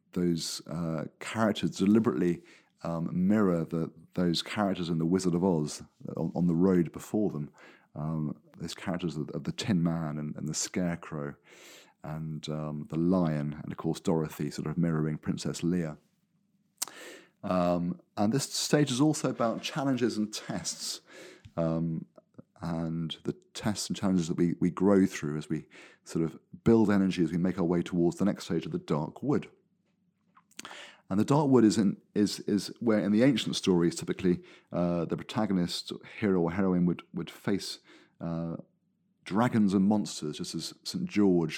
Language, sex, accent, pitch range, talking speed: English, male, British, 85-105 Hz, 165 wpm